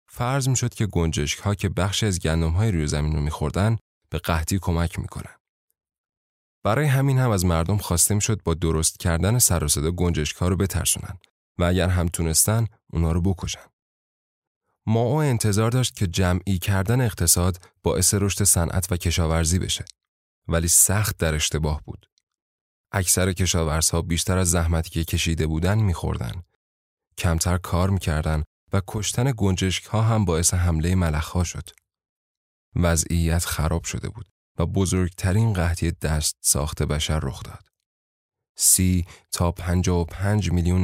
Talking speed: 145 wpm